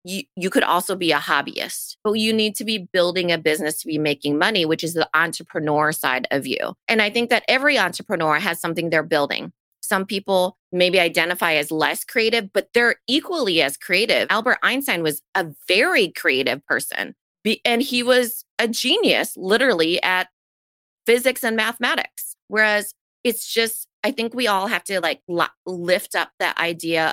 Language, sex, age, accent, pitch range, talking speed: English, female, 30-49, American, 155-210 Hz, 175 wpm